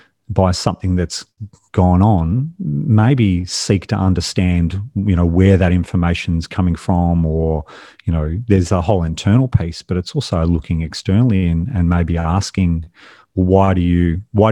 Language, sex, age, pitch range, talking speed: English, male, 40-59, 85-100 Hz, 155 wpm